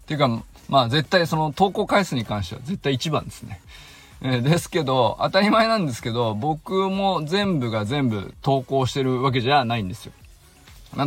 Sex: male